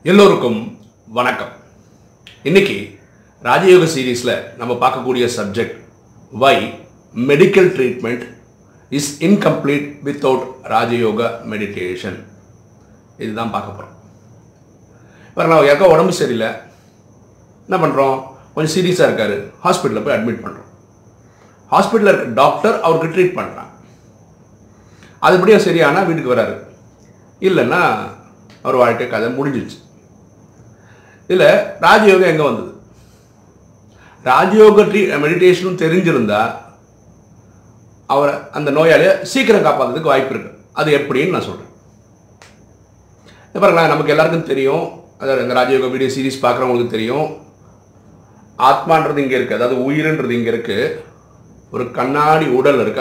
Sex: male